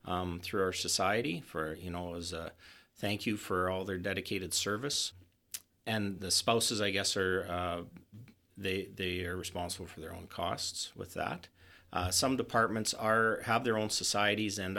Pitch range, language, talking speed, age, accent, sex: 90-110 Hz, English, 170 wpm, 40-59, American, male